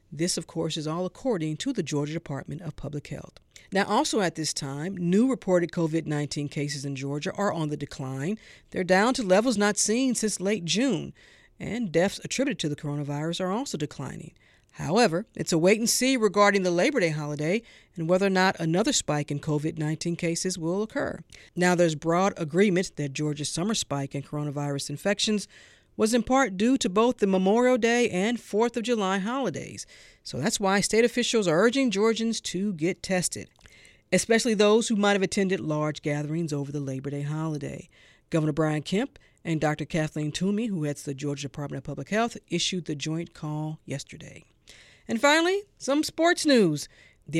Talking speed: 180 wpm